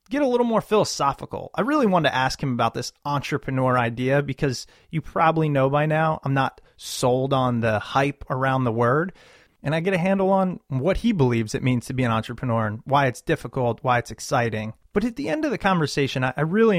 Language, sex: English, male